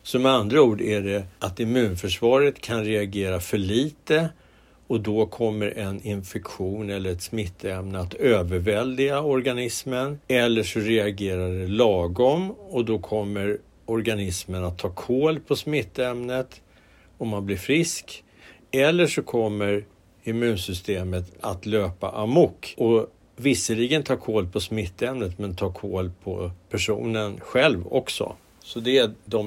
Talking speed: 130 wpm